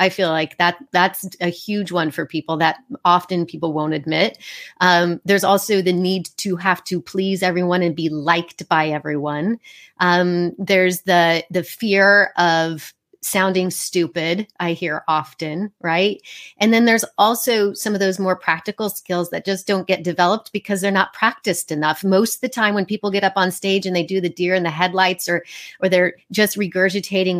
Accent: American